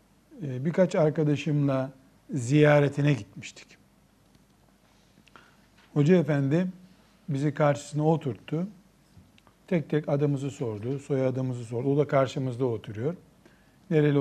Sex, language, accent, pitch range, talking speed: male, Turkish, native, 135-190 Hz, 85 wpm